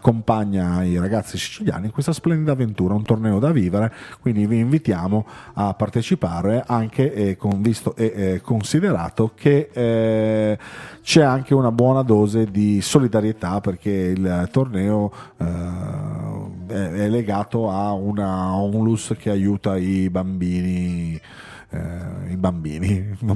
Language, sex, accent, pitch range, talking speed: Italian, male, native, 95-115 Hz, 125 wpm